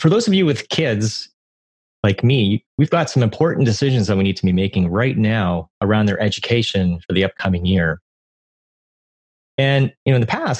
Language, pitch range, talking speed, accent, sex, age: English, 95-135 Hz, 190 wpm, American, male, 30-49